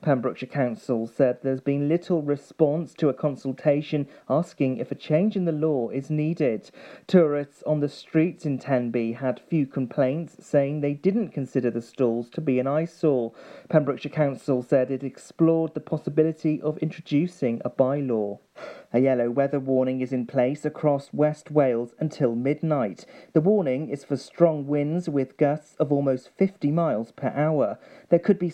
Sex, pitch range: male, 130-160 Hz